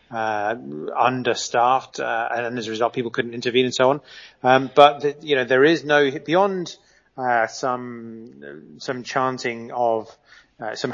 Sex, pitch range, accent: male, 115-135 Hz, British